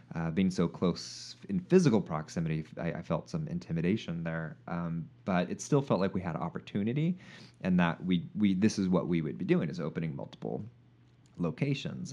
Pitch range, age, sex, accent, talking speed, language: 85-125 Hz, 30-49, male, American, 190 wpm, English